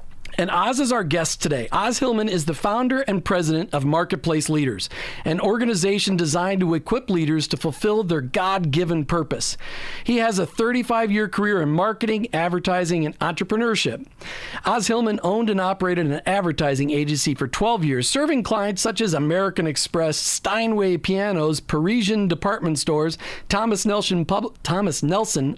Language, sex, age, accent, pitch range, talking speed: English, male, 40-59, American, 155-210 Hz, 145 wpm